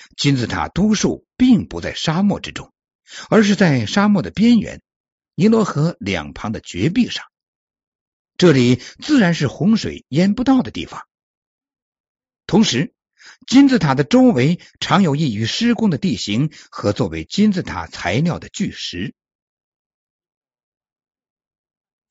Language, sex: Chinese, male